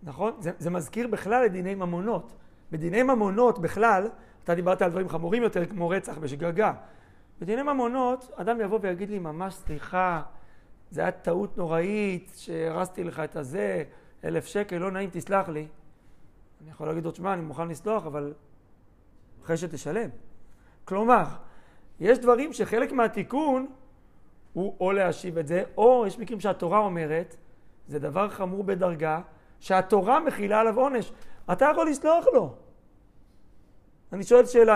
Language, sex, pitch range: Hebrew, male, 165-225 Hz